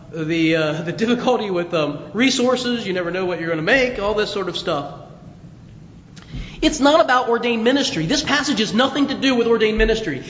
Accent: American